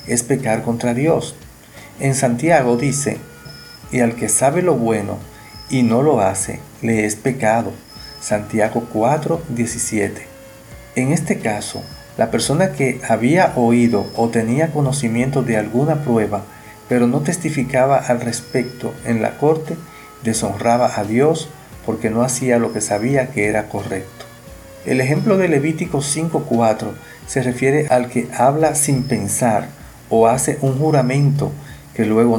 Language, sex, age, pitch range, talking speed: Spanish, male, 50-69, 110-135 Hz, 140 wpm